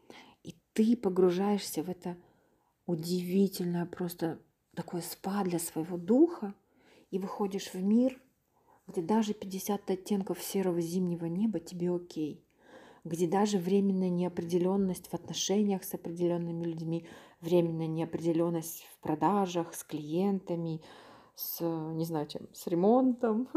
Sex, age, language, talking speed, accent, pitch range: female, 30-49, Ukrainian, 115 wpm, native, 170-205 Hz